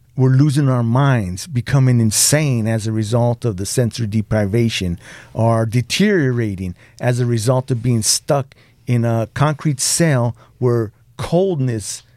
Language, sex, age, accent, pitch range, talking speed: English, male, 50-69, American, 120-140 Hz, 135 wpm